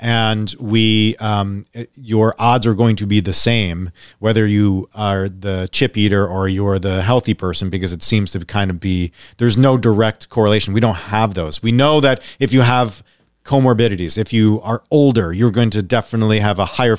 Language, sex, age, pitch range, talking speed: English, male, 40-59, 105-135 Hz, 195 wpm